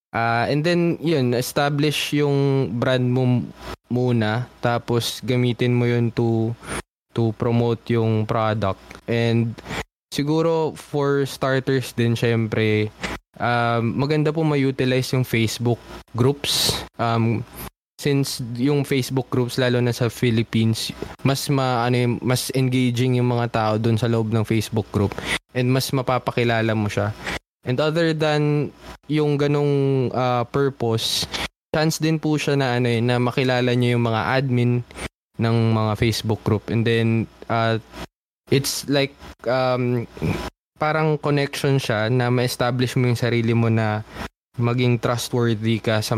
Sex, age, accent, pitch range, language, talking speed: male, 20-39, native, 115-130 Hz, Filipino, 135 wpm